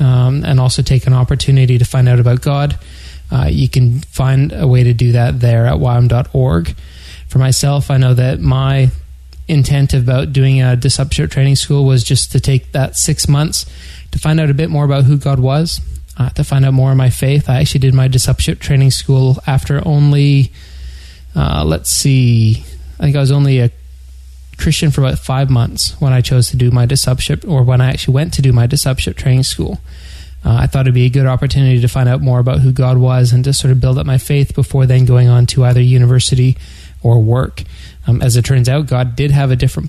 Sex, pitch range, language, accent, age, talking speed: male, 120-135 Hz, English, American, 20-39, 220 wpm